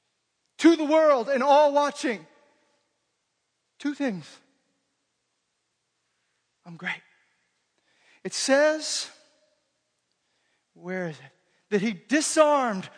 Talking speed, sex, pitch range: 85 wpm, male, 185-265 Hz